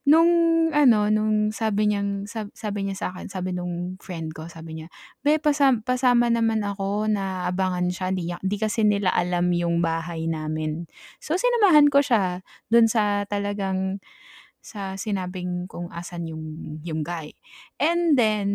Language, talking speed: Filipino, 155 wpm